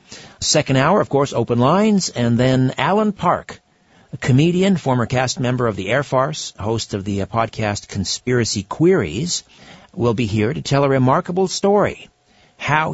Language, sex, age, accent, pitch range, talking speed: English, male, 50-69, American, 110-150 Hz, 160 wpm